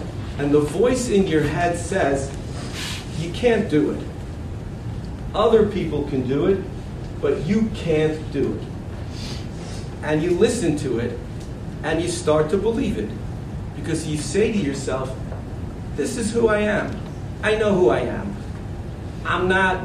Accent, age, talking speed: American, 40-59, 150 wpm